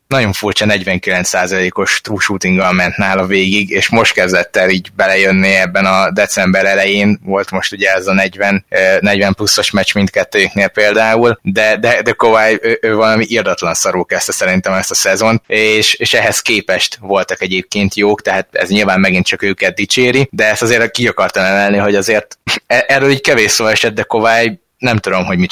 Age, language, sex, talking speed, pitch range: 20-39, Hungarian, male, 180 wpm, 95-115 Hz